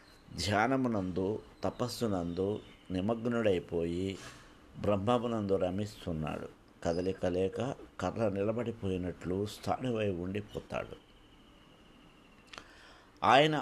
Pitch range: 95-120 Hz